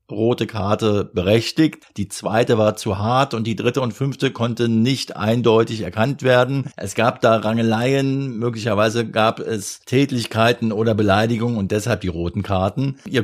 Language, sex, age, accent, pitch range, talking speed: German, male, 50-69, German, 105-125 Hz, 155 wpm